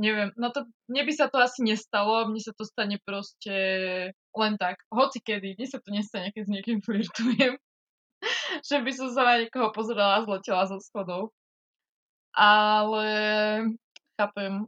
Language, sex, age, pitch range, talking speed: Slovak, female, 20-39, 200-240 Hz, 155 wpm